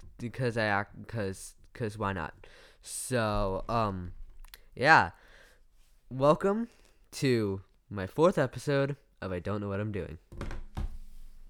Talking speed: 115 wpm